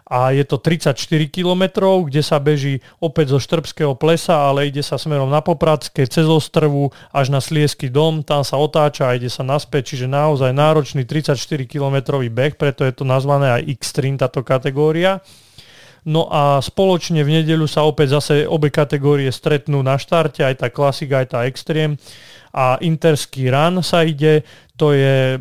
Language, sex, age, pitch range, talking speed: Slovak, male, 30-49, 135-155 Hz, 170 wpm